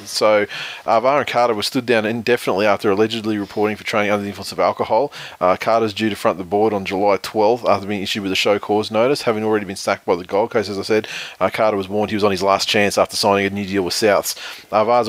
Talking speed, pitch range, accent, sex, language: 260 wpm, 100-115 Hz, Australian, male, English